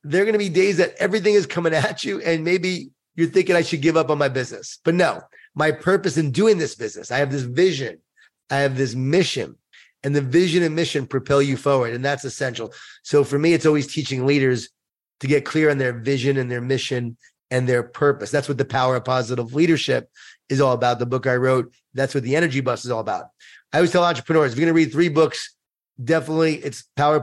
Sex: male